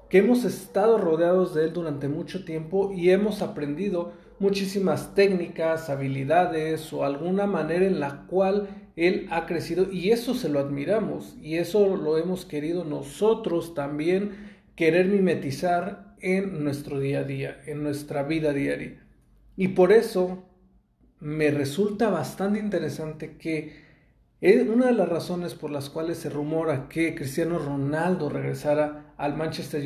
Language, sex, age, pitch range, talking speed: Spanish, male, 40-59, 150-195 Hz, 145 wpm